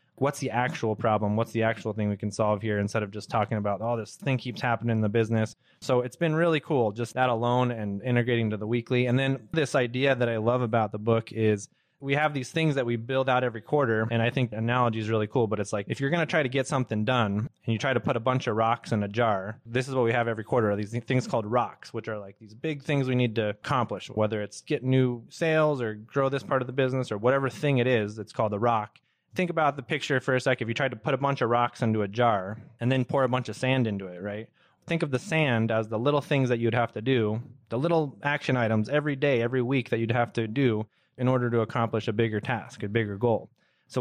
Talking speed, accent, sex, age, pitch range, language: 275 wpm, American, male, 20-39, 110-135 Hz, English